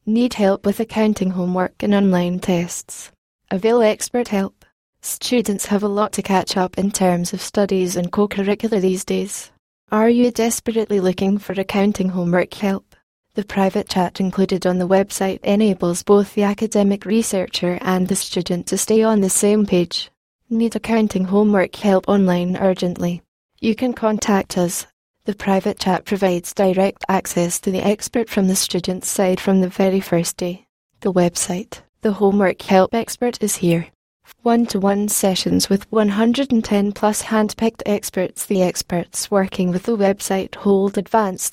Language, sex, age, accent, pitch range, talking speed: English, female, 10-29, British, 185-215 Hz, 155 wpm